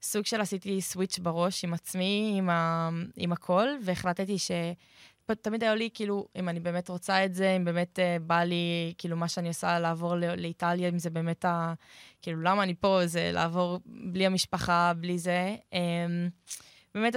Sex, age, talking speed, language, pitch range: female, 20-39, 180 wpm, Hebrew, 175-195 Hz